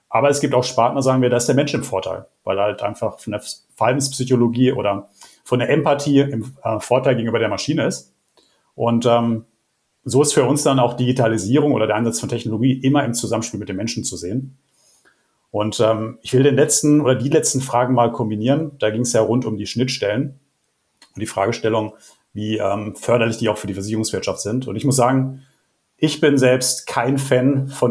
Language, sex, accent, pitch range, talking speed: German, male, German, 110-130 Hz, 200 wpm